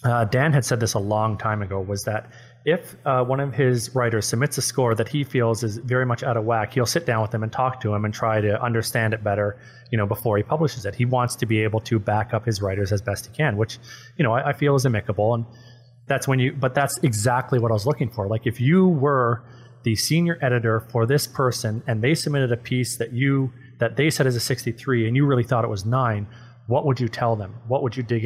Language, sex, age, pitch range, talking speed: English, male, 30-49, 115-130 Hz, 265 wpm